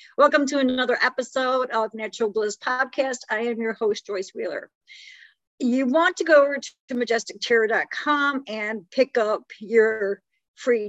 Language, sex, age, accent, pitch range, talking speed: English, female, 50-69, American, 215-265 Hz, 145 wpm